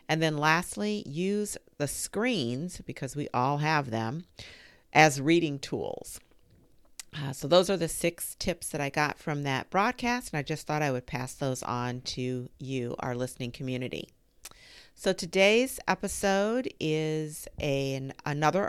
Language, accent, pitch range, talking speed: English, American, 125-180 Hz, 150 wpm